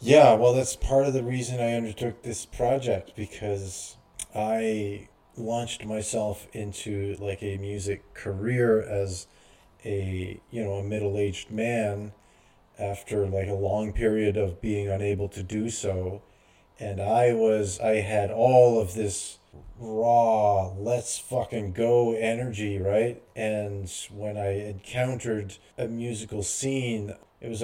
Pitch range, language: 100-120 Hz, English